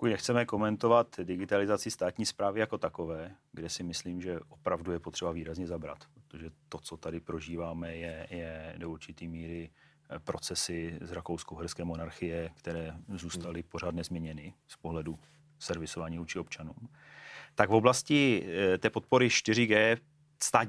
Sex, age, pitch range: male, 40-59, 85-105 Hz